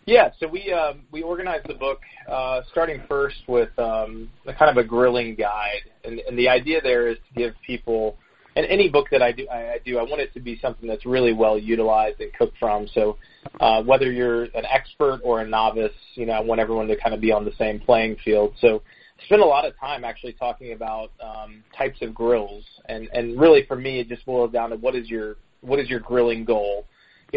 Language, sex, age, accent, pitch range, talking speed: English, male, 20-39, American, 110-130 Hz, 230 wpm